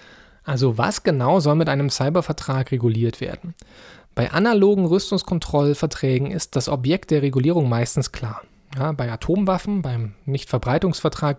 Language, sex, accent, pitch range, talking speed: German, male, German, 125-160 Hz, 120 wpm